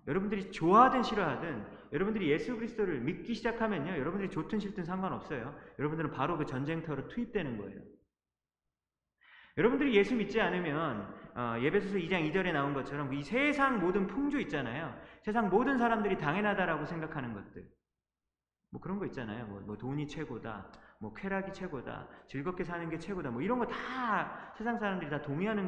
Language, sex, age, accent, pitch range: Korean, male, 30-49, native, 155-220 Hz